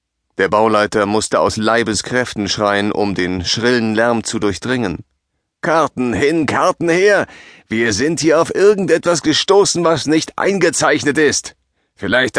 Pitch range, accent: 105-135 Hz, German